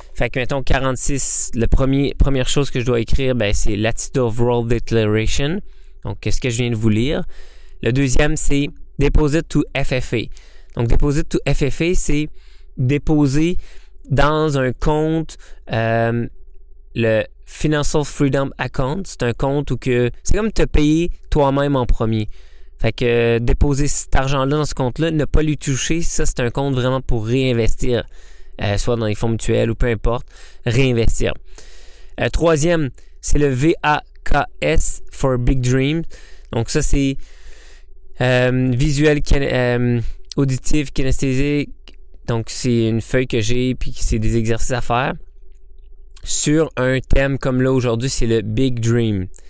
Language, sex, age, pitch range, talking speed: French, male, 20-39, 120-150 Hz, 165 wpm